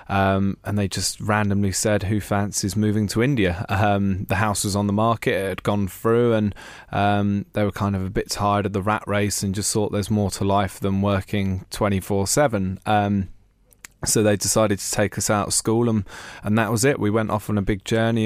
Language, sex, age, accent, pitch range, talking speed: English, male, 20-39, British, 100-110 Hz, 220 wpm